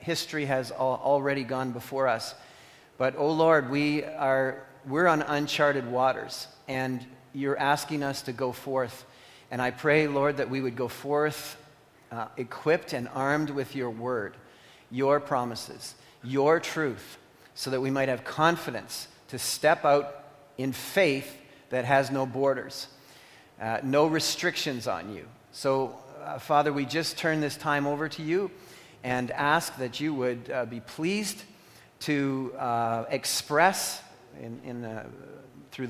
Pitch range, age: 125-155 Hz, 40-59